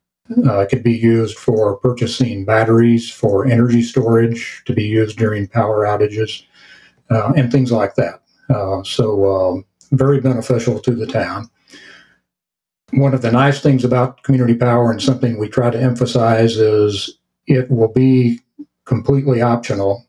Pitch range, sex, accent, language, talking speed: 105-130 Hz, male, American, English, 150 wpm